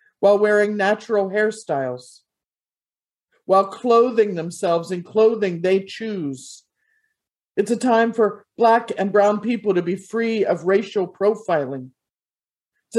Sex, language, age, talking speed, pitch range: male, English, 50-69, 120 wpm, 175-220 Hz